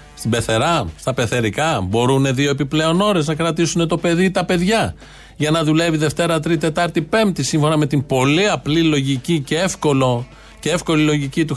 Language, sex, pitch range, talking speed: Greek, male, 125-175 Hz, 175 wpm